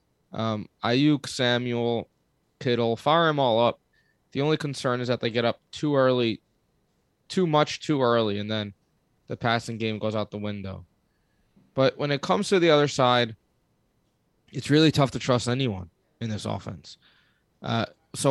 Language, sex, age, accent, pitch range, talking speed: English, male, 20-39, American, 115-145 Hz, 165 wpm